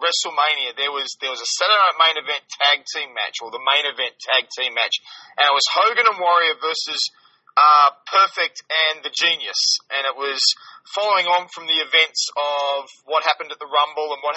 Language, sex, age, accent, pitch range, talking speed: English, male, 20-39, Australian, 145-180 Hz, 200 wpm